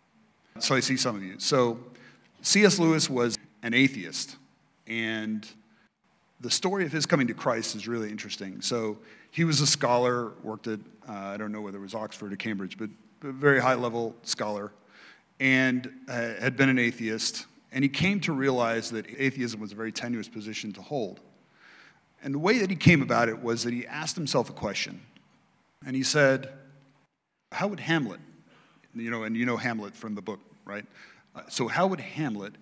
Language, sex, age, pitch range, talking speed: English, male, 40-59, 110-145 Hz, 190 wpm